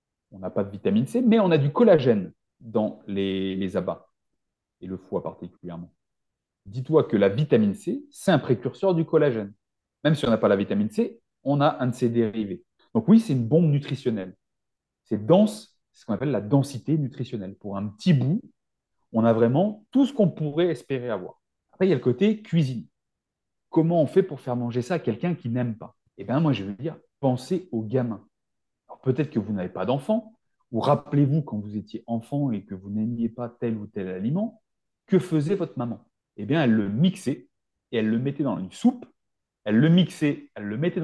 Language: French